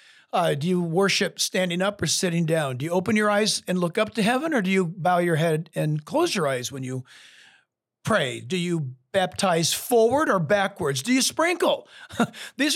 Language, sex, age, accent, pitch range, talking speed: English, male, 50-69, American, 165-230 Hz, 200 wpm